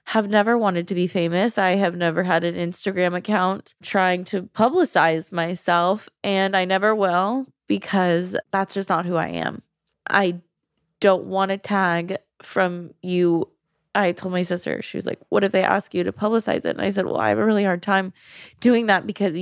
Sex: female